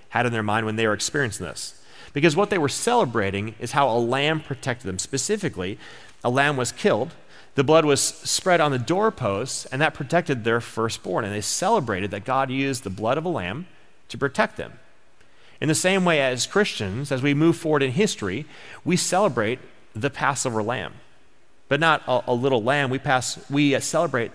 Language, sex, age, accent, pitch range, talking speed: English, male, 40-59, American, 110-150 Hz, 190 wpm